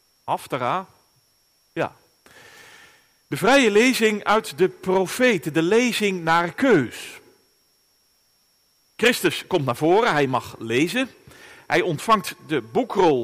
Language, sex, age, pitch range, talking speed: Dutch, male, 40-59, 165-245 Hz, 110 wpm